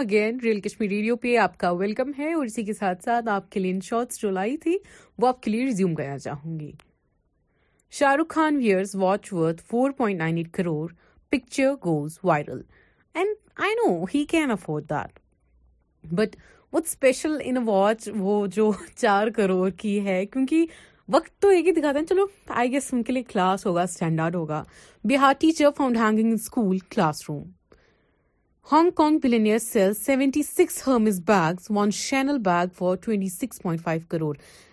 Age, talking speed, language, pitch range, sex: 30-49, 95 wpm, Urdu, 180-250 Hz, female